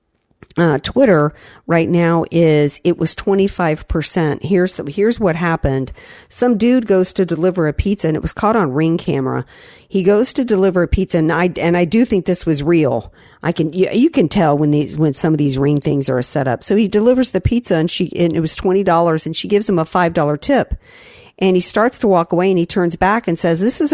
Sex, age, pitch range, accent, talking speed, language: female, 50-69, 160-210 Hz, American, 230 wpm, English